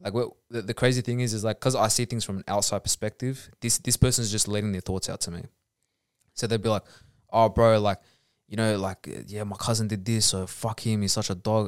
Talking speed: 245 wpm